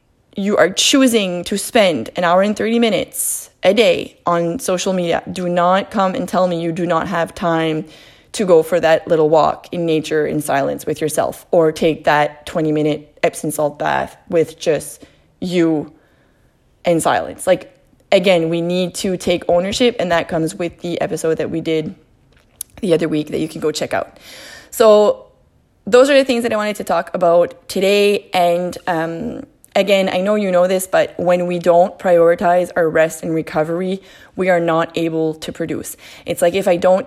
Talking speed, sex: 190 wpm, female